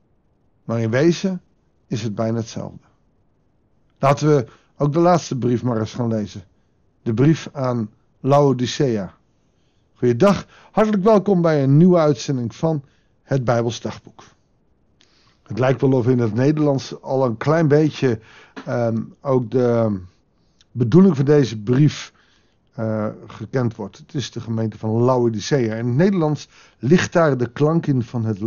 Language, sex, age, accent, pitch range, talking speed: Dutch, male, 50-69, Dutch, 115-160 Hz, 145 wpm